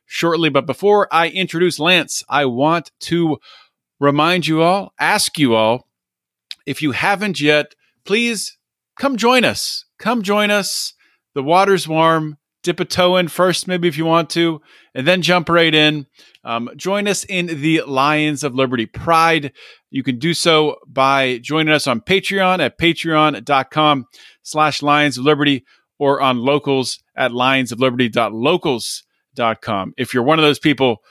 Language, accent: English, American